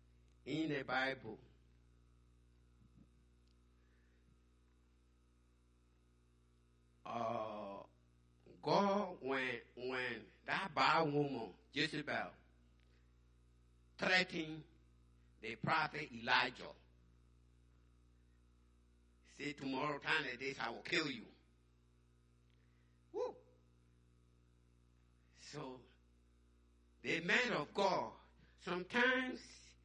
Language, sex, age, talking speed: English, male, 60-79, 65 wpm